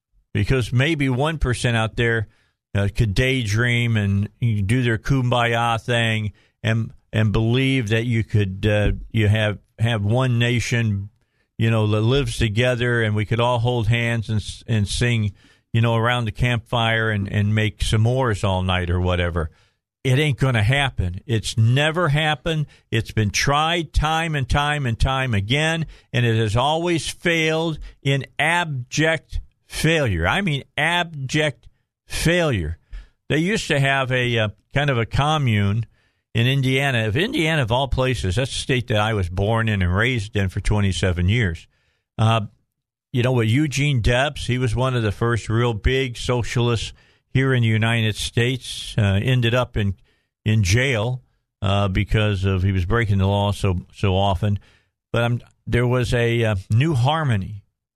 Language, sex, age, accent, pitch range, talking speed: English, male, 50-69, American, 105-130 Hz, 165 wpm